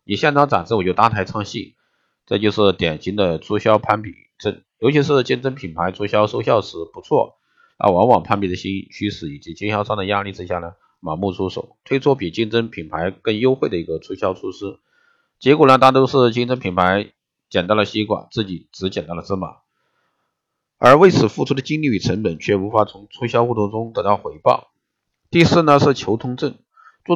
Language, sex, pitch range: Chinese, male, 95-125 Hz